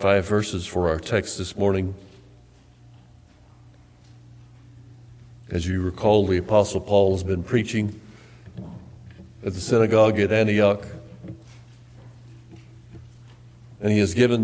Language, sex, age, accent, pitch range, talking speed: English, male, 60-79, American, 100-120 Hz, 105 wpm